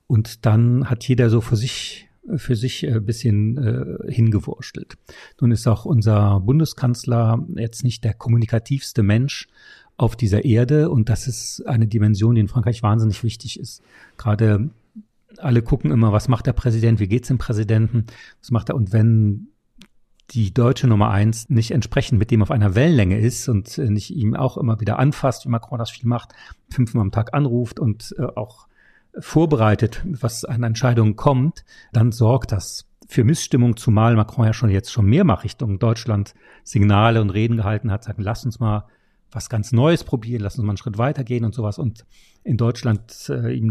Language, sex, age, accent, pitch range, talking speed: German, male, 40-59, German, 110-135 Hz, 180 wpm